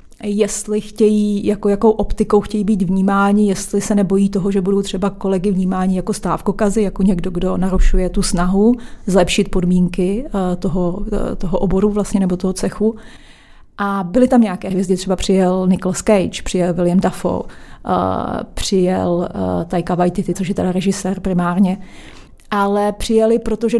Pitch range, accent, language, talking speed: 190-215 Hz, native, Czech, 145 wpm